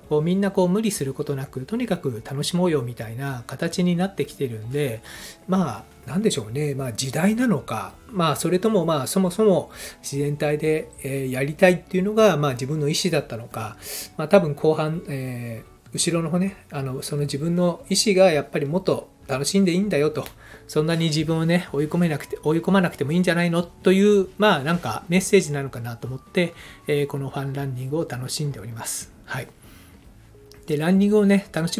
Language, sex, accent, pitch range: Japanese, male, native, 135-175 Hz